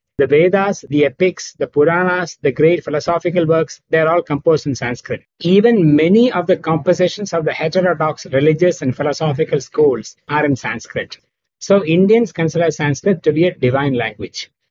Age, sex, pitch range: 60-79, male, 150-185 Hz